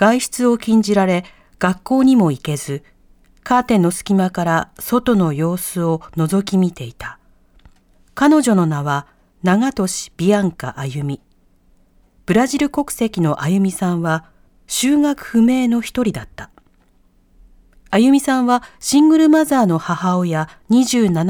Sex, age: female, 40-59